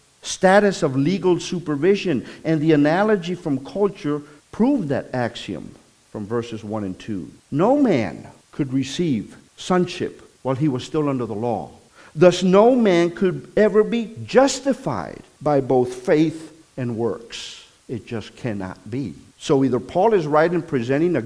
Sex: male